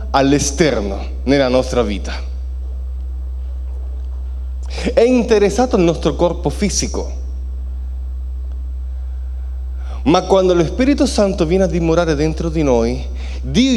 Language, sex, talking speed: Italian, male, 95 wpm